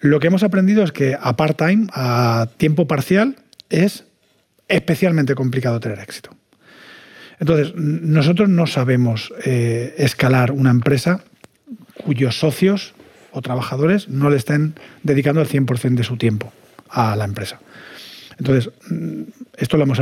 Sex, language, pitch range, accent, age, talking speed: male, Spanish, 125-170 Hz, Spanish, 40-59, 130 wpm